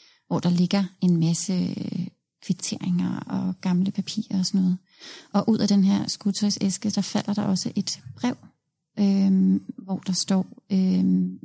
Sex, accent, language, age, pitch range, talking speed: female, native, Danish, 30-49, 180-205 Hz, 155 wpm